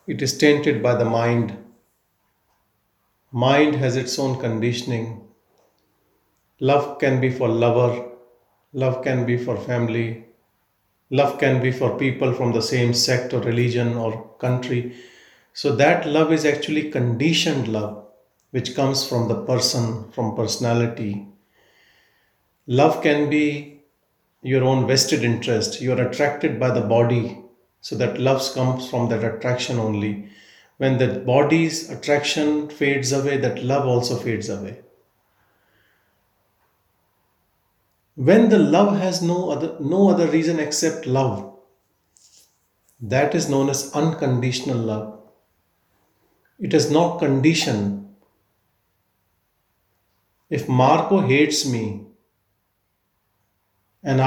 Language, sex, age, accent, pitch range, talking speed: English, male, 40-59, Indian, 110-140 Hz, 115 wpm